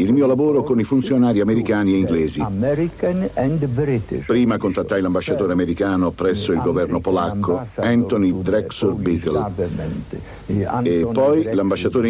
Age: 60-79